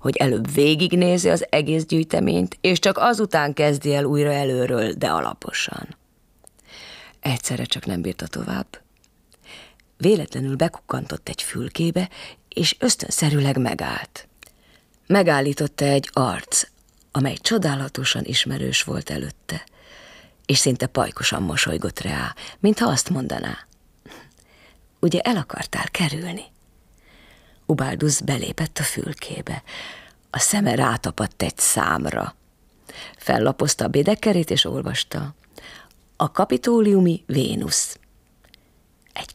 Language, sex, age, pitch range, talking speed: Hungarian, female, 30-49, 130-175 Hz, 100 wpm